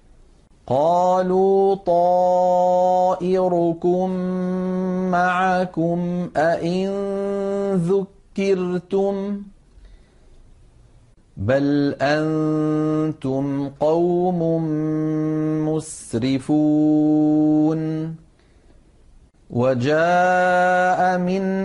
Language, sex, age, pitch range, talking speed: Arabic, male, 50-69, 155-185 Hz, 30 wpm